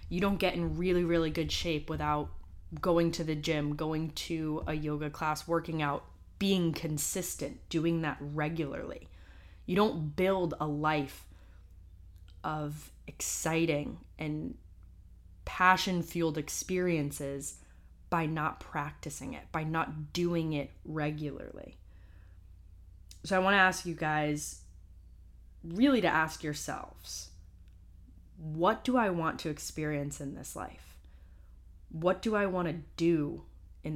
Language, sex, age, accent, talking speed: English, female, 20-39, American, 125 wpm